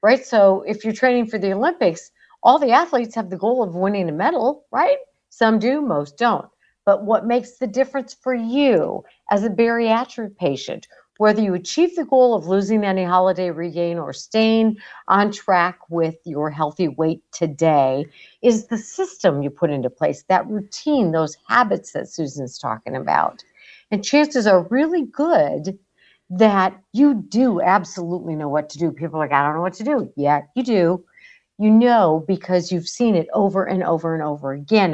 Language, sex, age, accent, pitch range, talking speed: English, female, 50-69, American, 170-240 Hz, 180 wpm